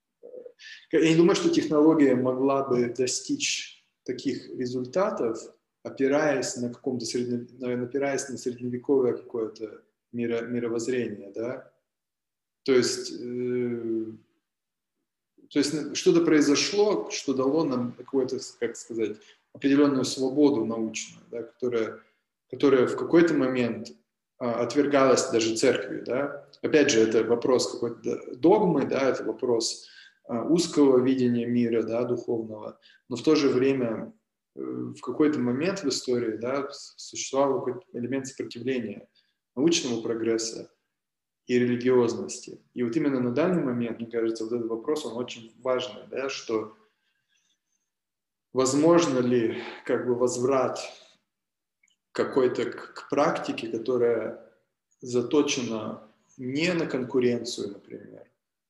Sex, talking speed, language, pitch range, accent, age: male, 105 wpm, Russian, 120-145 Hz, native, 20-39